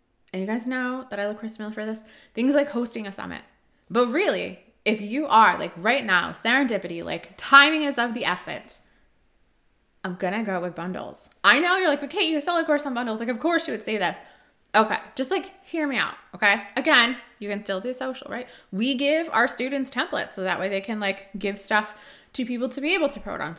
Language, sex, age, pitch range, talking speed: English, female, 20-39, 195-270 Hz, 230 wpm